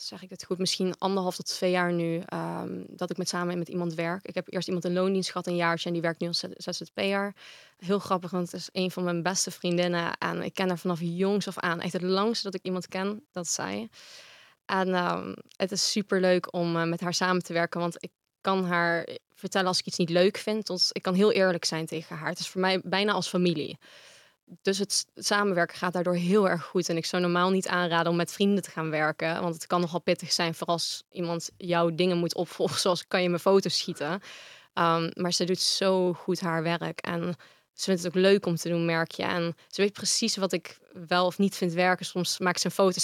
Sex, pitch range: female, 170-190 Hz